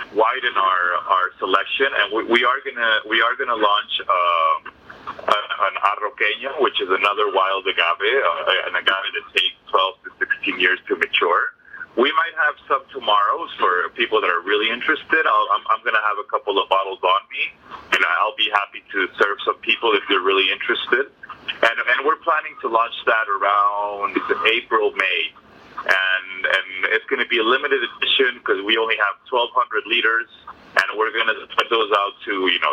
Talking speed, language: 185 wpm, English